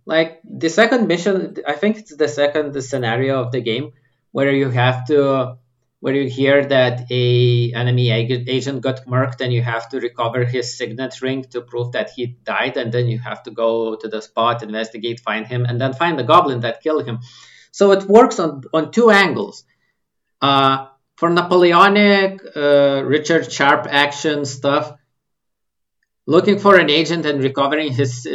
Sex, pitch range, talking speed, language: male, 125-155 Hz, 170 wpm, English